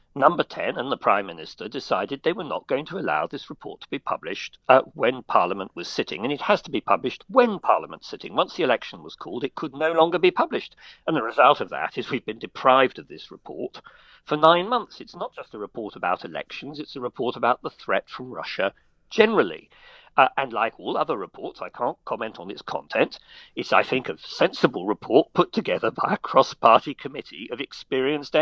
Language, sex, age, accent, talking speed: English, male, 50-69, British, 210 wpm